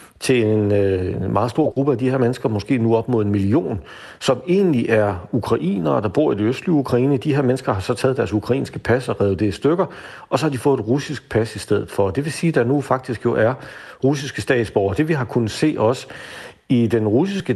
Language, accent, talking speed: Danish, native, 240 wpm